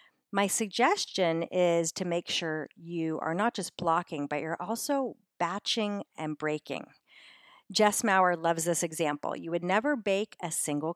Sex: female